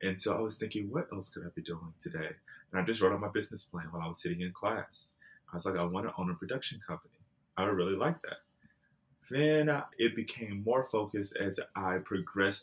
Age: 20-39